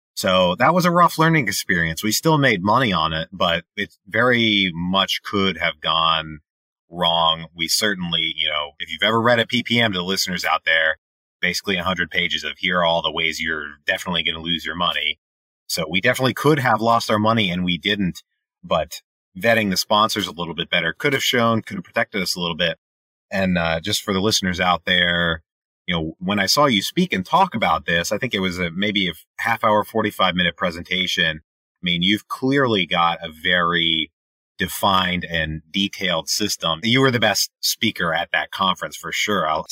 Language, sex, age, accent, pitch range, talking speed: English, male, 30-49, American, 85-105 Hz, 205 wpm